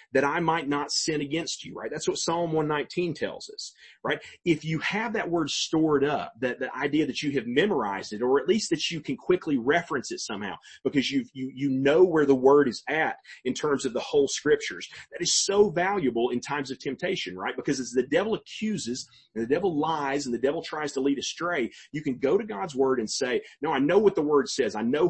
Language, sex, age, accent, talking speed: English, male, 30-49, American, 235 wpm